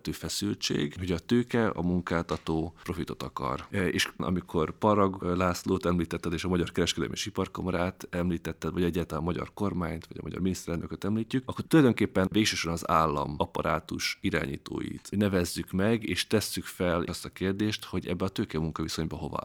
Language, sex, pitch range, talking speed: Hungarian, male, 80-95 Hz, 150 wpm